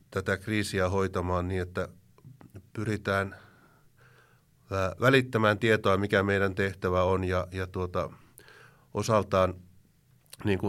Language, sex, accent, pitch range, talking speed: Finnish, male, native, 95-115 Hz, 85 wpm